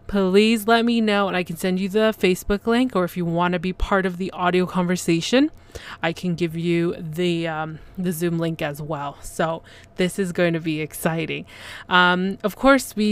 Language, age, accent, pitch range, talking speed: English, 20-39, American, 165-195 Hz, 205 wpm